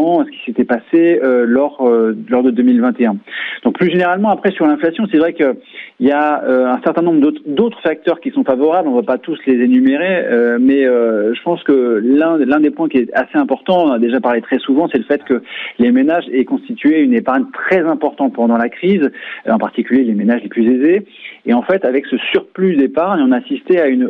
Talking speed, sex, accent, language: 230 wpm, male, French, French